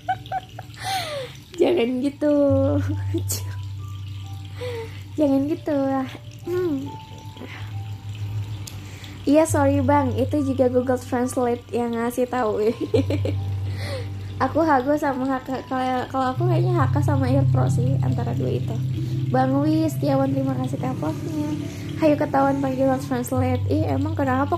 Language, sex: Indonesian, female